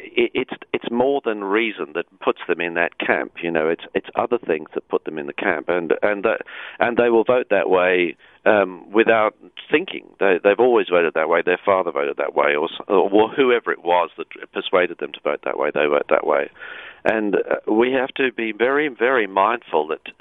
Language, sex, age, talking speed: English, male, 50-69, 215 wpm